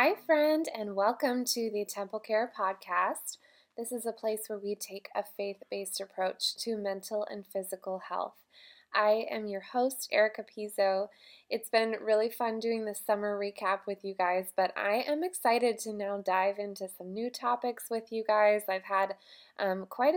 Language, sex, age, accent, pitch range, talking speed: English, female, 20-39, American, 185-220 Hz, 175 wpm